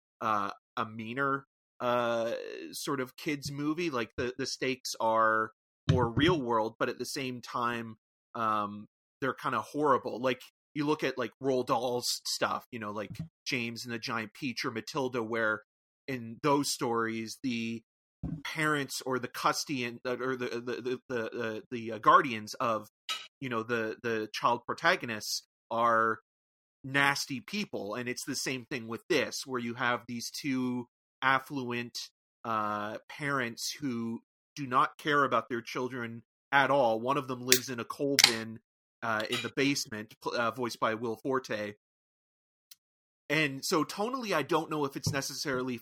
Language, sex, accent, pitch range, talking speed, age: English, male, American, 115-135 Hz, 160 wpm, 30-49